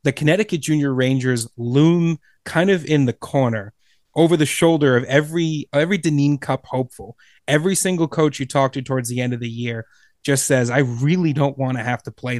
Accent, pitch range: American, 125-150 Hz